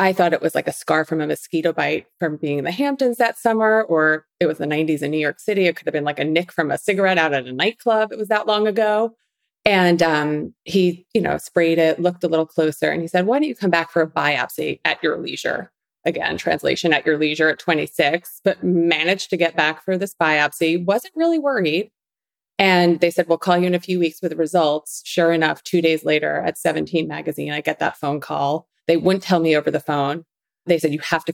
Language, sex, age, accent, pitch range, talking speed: English, female, 30-49, American, 155-185 Hz, 245 wpm